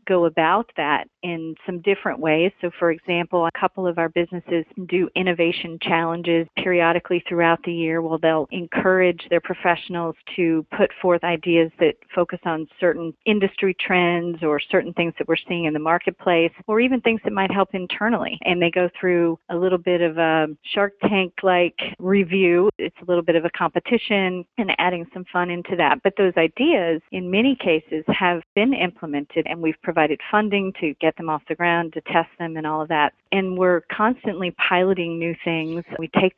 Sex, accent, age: female, American, 40-59